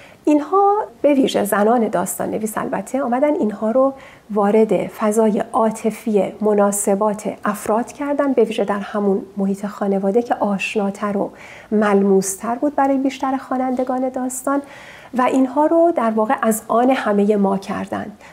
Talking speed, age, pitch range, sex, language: 135 wpm, 40-59, 205-260 Hz, female, Persian